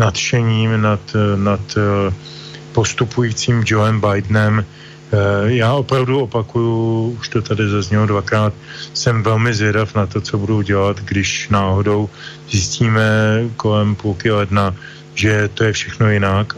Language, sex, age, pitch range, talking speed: Slovak, male, 20-39, 105-130 Hz, 125 wpm